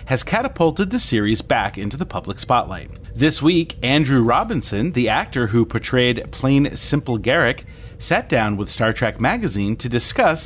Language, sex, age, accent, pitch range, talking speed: English, male, 30-49, American, 110-155 Hz, 160 wpm